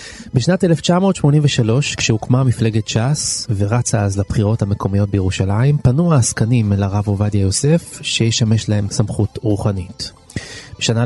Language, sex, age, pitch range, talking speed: Hebrew, male, 30-49, 105-140 Hz, 115 wpm